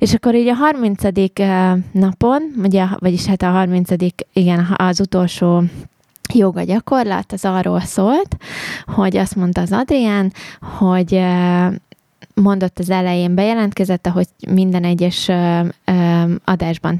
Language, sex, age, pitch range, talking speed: Hungarian, female, 20-39, 175-200 Hz, 115 wpm